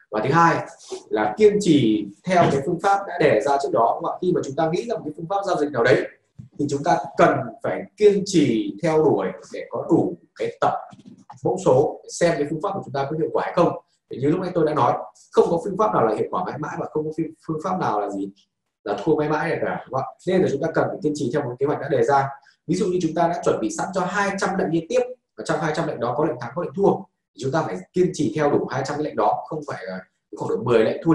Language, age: Vietnamese, 20-39